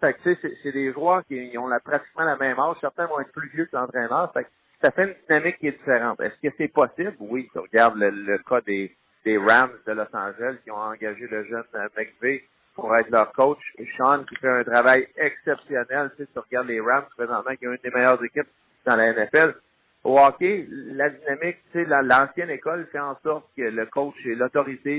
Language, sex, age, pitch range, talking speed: French, male, 50-69, 125-155 Hz, 235 wpm